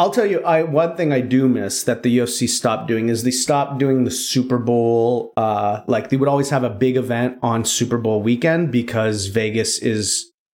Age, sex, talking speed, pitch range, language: 30-49, male, 210 wpm, 120-155 Hz, English